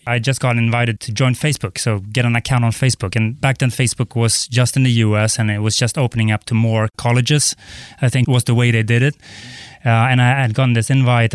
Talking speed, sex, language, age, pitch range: 245 wpm, male, English, 20-39, 115-135 Hz